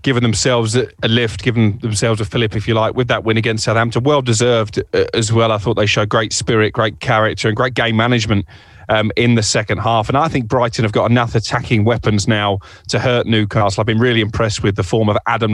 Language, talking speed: English, 225 wpm